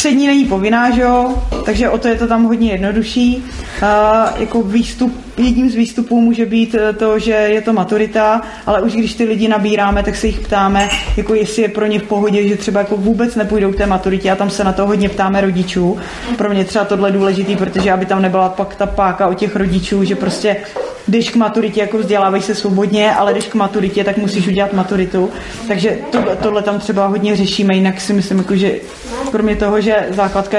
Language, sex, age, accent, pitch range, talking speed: Czech, female, 20-39, native, 195-220 Hz, 210 wpm